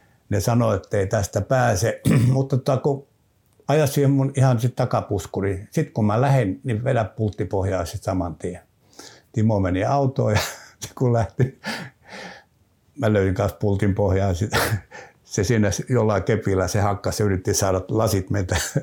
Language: Finnish